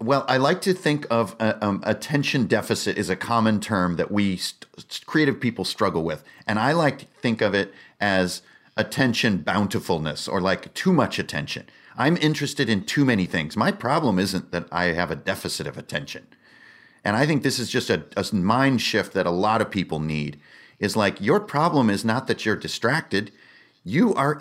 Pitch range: 105-140 Hz